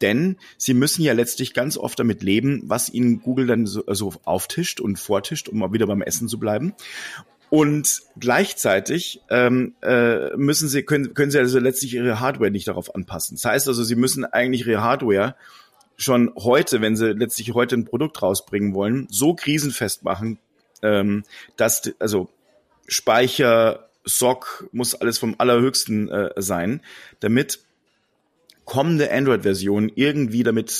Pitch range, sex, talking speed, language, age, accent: 110-135 Hz, male, 155 wpm, German, 30-49, German